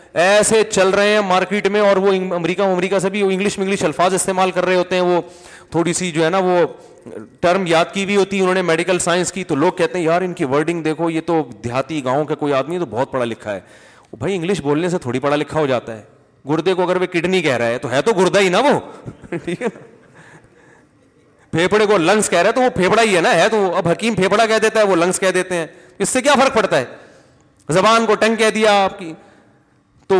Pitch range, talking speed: 160-205 Hz, 210 wpm